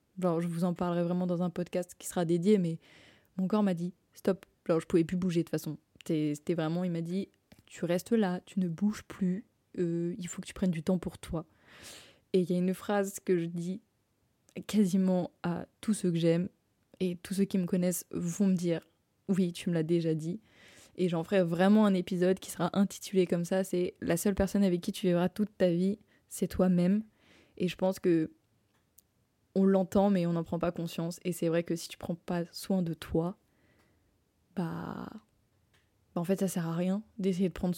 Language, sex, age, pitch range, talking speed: French, female, 20-39, 175-195 Hz, 220 wpm